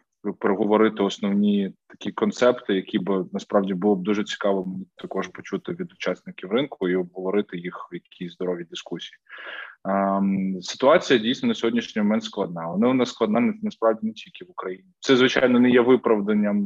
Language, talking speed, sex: Ukrainian, 160 wpm, male